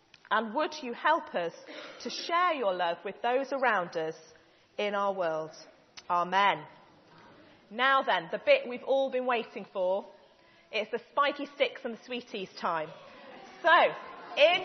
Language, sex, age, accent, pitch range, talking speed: English, female, 40-59, British, 270-350 Hz, 150 wpm